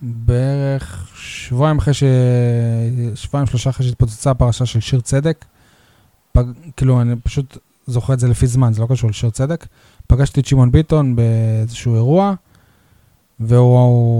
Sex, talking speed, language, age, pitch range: male, 125 wpm, Hebrew, 20-39, 115-140 Hz